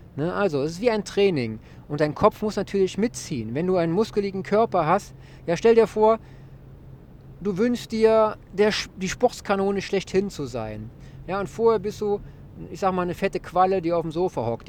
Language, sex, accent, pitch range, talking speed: German, male, German, 140-195 Hz, 190 wpm